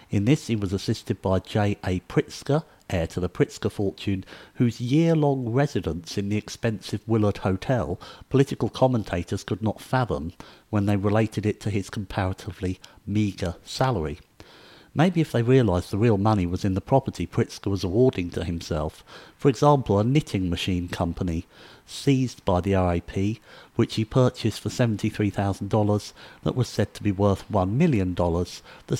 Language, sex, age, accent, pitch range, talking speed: English, male, 50-69, British, 100-125 Hz, 155 wpm